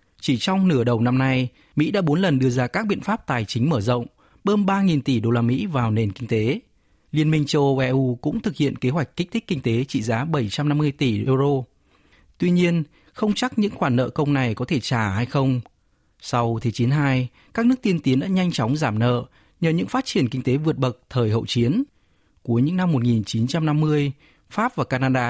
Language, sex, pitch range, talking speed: Vietnamese, male, 120-165 Hz, 220 wpm